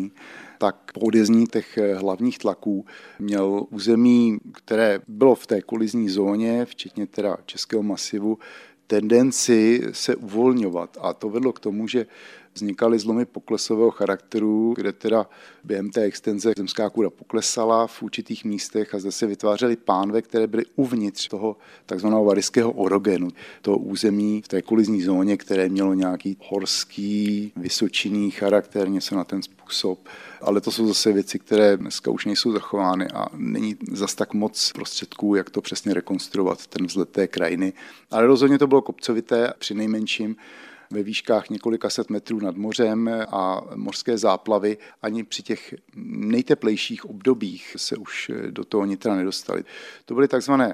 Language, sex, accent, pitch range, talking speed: Czech, male, native, 105-115 Hz, 150 wpm